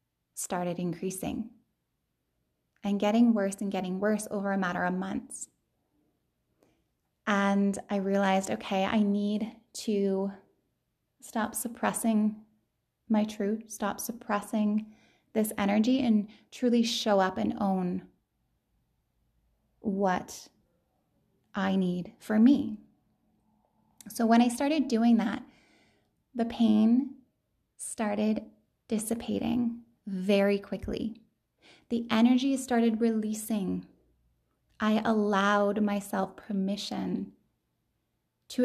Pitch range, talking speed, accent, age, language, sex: 200-235 Hz, 95 wpm, American, 20-39, English, female